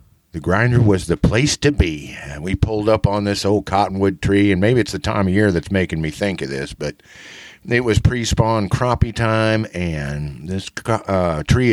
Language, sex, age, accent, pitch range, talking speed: English, male, 50-69, American, 95-115 Hz, 200 wpm